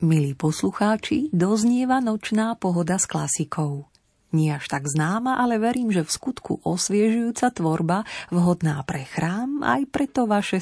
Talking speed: 135 wpm